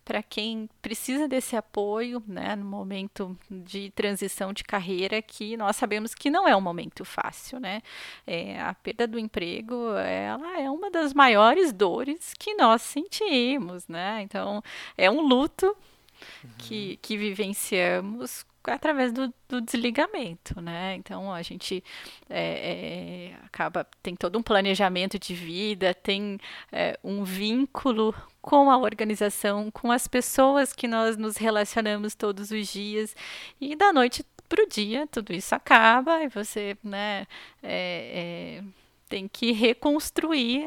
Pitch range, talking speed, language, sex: 200-260 Hz, 135 wpm, Portuguese, female